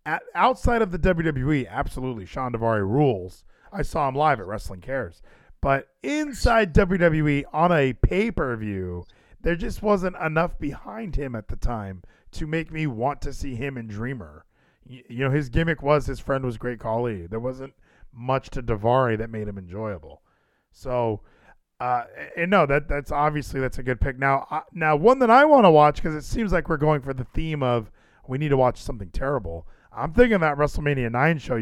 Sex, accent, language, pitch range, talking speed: male, American, English, 115-155 Hz, 190 wpm